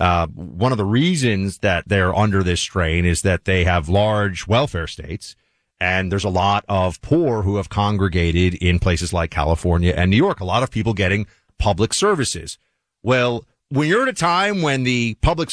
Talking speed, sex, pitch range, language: 190 wpm, male, 100-145 Hz, English